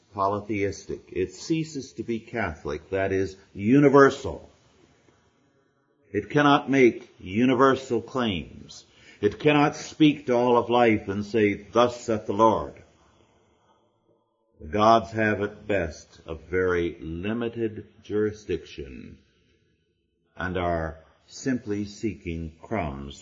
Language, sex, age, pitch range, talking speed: English, male, 50-69, 95-125 Hz, 105 wpm